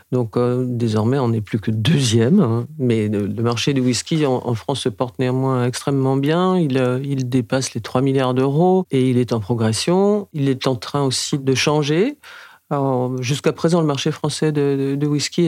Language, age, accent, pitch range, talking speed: French, 50-69, French, 120-150 Hz, 200 wpm